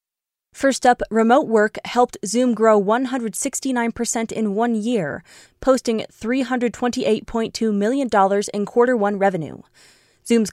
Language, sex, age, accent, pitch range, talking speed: English, female, 20-39, American, 205-245 Hz, 110 wpm